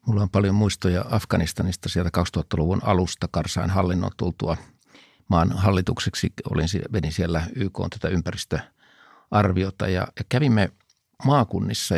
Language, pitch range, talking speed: Finnish, 90-110 Hz, 110 wpm